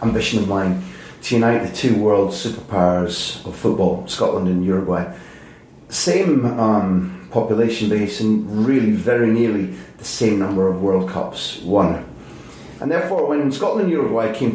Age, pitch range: 30-49, 95-115 Hz